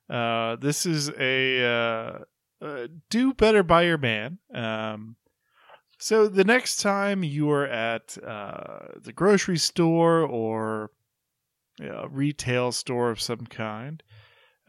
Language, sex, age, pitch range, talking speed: English, male, 30-49, 120-165 Hz, 115 wpm